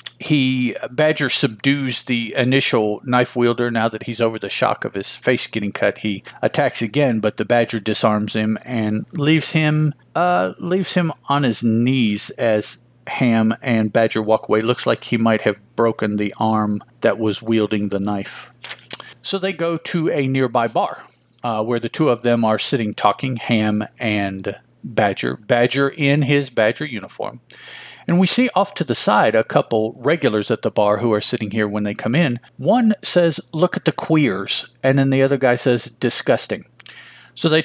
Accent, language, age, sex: American, English, 50-69, male